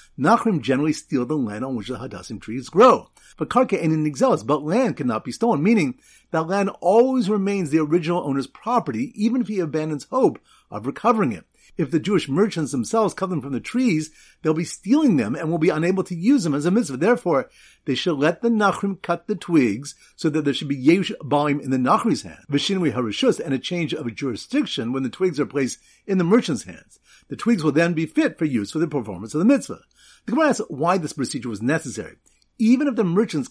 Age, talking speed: 50-69, 220 wpm